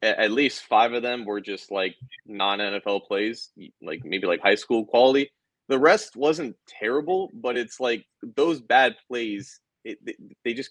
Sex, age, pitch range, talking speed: male, 20-39, 100-145 Hz, 160 wpm